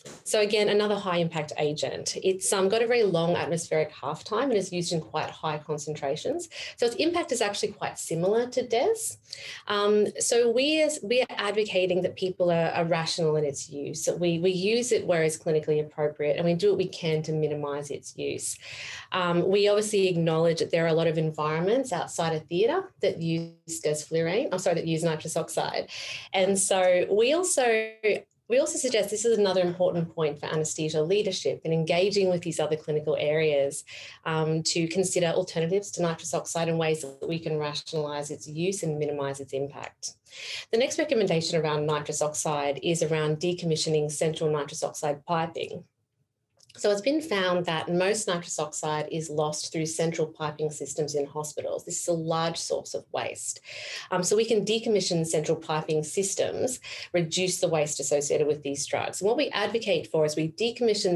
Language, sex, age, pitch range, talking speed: English, female, 30-49, 155-195 Hz, 185 wpm